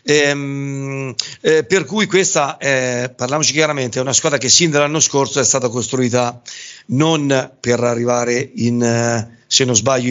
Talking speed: 140 wpm